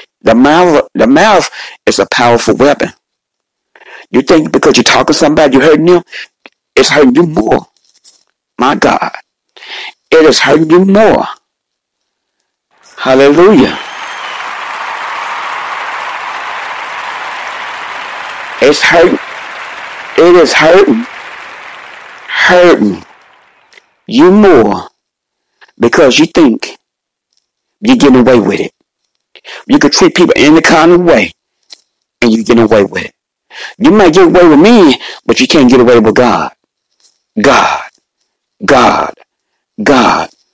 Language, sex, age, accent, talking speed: English, male, 60-79, American, 115 wpm